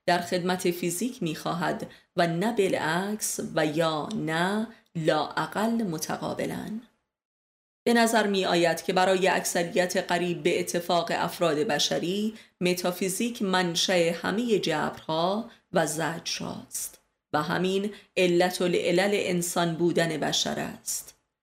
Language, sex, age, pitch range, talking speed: Persian, female, 30-49, 170-200 Hz, 105 wpm